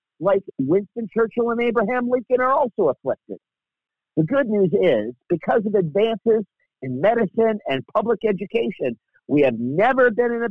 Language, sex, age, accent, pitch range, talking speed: English, male, 50-69, American, 160-230 Hz, 155 wpm